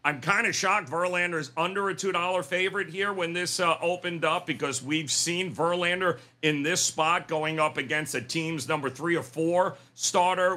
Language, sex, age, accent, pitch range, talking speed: English, male, 50-69, American, 140-185 Hz, 185 wpm